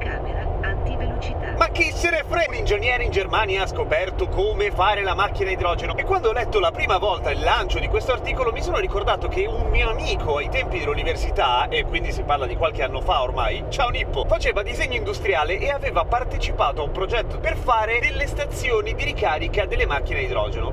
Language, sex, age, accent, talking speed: Italian, male, 30-49, native, 205 wpm